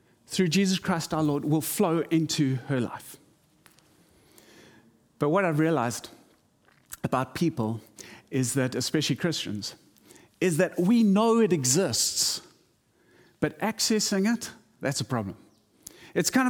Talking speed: 125 wpm